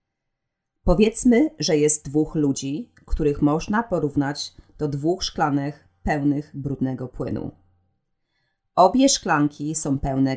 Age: 30-49